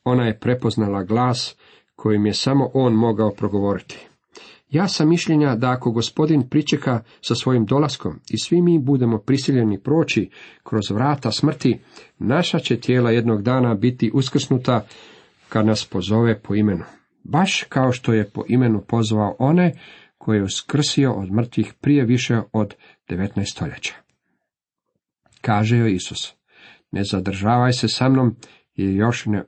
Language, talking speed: Croatian, 145 wpm